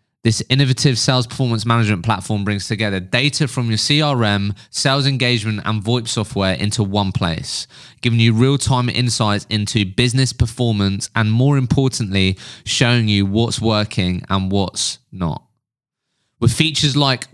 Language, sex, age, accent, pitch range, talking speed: English, male, 20-39, British, 110-130 Hz, 140 wpm